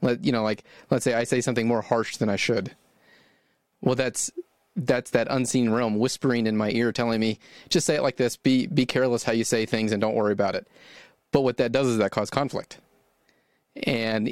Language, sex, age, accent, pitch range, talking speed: English, male, 30-49, American, 110-130 Hz, 215 wpm